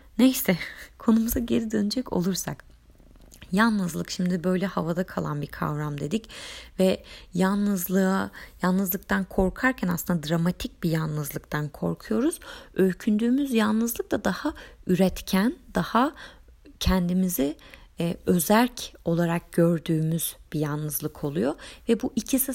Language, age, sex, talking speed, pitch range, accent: Turkish, 30-49, female, 105 wpm, 155-235 Hz, native